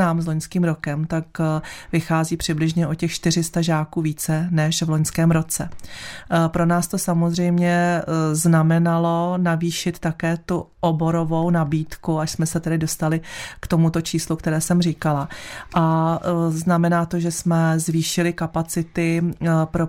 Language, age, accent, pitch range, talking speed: Czech, 30-49, native, 155-170 Hz, 135 wpm